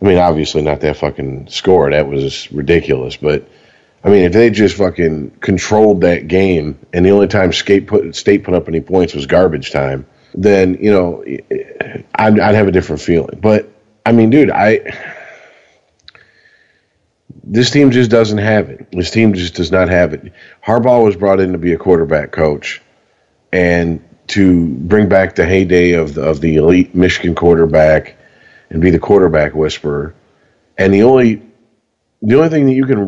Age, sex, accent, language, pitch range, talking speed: 40-59, male, American, English, 85-110 Hz, 175 wpm